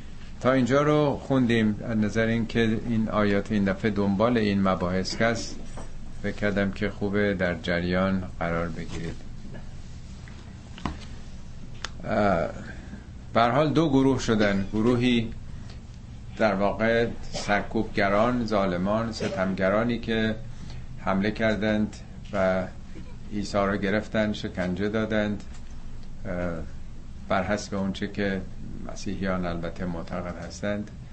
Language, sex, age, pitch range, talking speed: Persian, male, 50-69, 90-110 Hz, 100 wpm